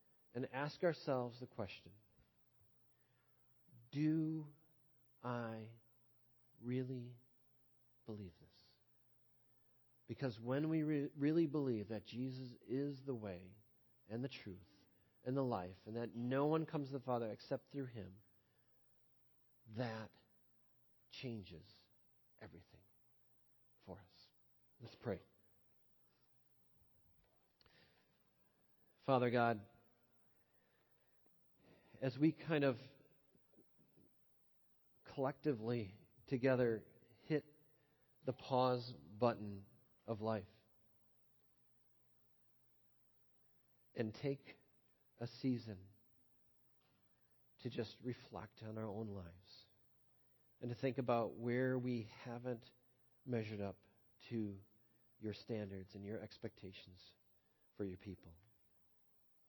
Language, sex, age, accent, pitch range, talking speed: English, male, 40-59, American, 100-130 Hz, 90 wpm